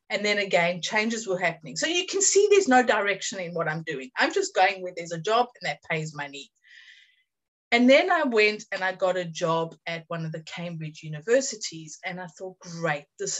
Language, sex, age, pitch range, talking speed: English, female, 30-49, 170-220 Hz, 215 wpm